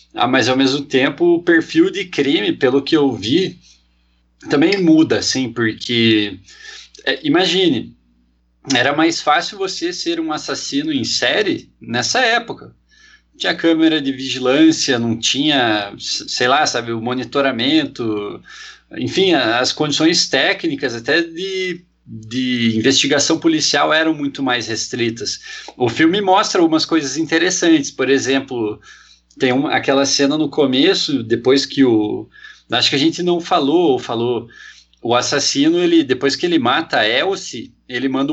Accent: Brazilian